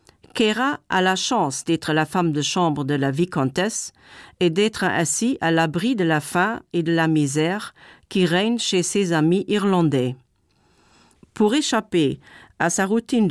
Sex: female